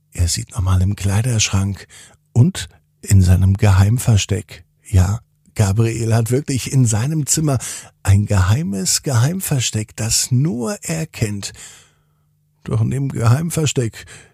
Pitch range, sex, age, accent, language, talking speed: 105-150 Hz, male, 50-69, German, German, 115 wpm